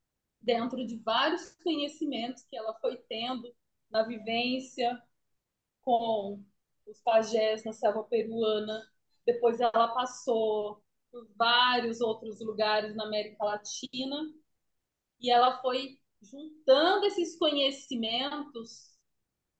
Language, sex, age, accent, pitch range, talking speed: Portuguese, female, 20-39, Brazilian, 220-275 Hz, 100 wpm